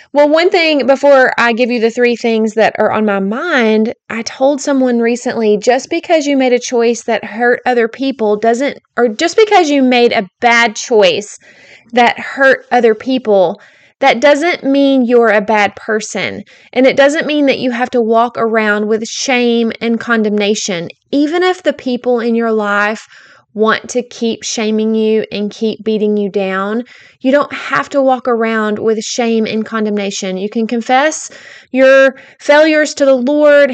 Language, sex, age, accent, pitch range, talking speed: English, female, 20-39, American, 220-260 Hz, 175 wpm